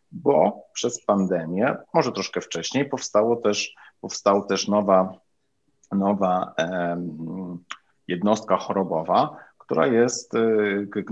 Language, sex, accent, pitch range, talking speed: Polish, male, native, 90-105 Hz, 85 wpm